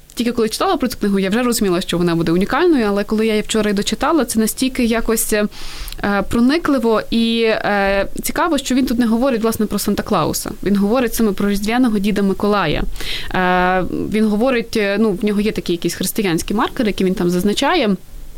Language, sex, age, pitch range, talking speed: Ukrainian, female, 20-39, 190-235 Hz, 180 wpm